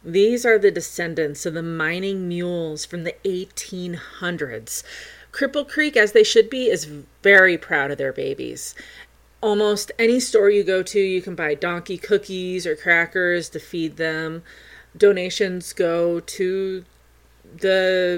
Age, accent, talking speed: 30-49, American, 140 wpm